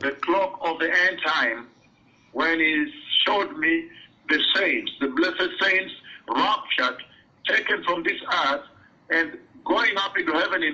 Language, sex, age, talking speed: English, male, 50-69, 145 wpm